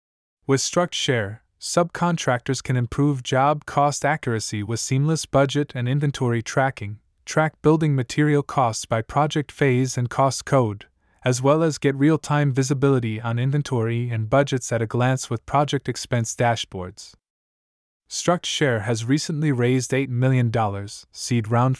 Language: English